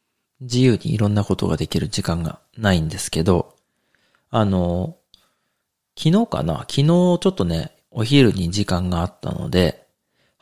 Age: 40-59